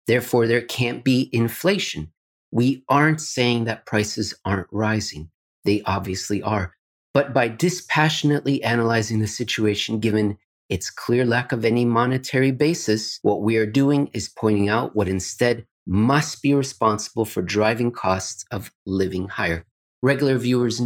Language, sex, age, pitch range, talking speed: English, male, 30-49, 105-125 Hz, 140 wpm